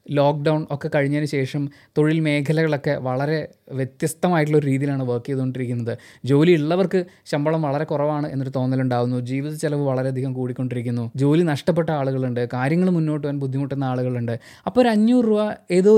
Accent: native